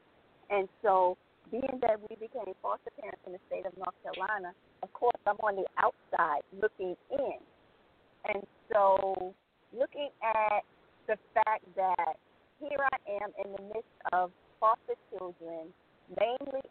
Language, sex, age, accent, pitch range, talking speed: English, female, 40-59, American, 195-260 Hz, 140 wpm